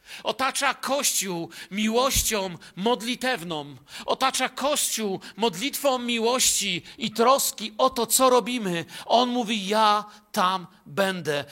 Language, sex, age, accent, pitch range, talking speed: Polish, male, 50-69, native, 170-230 Hz, 100 wpm